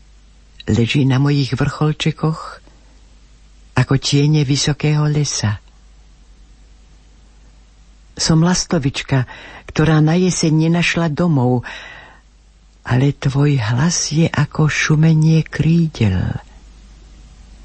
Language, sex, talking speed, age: Slovak, female, 75 wpm, 60-79